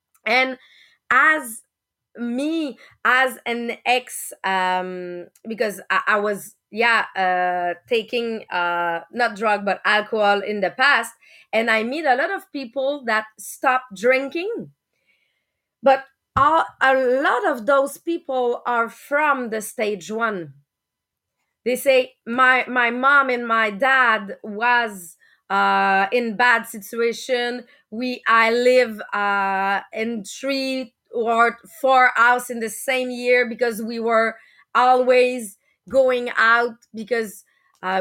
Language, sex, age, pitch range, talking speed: English, female, 30-49, 220-265 Hz, 125 wpm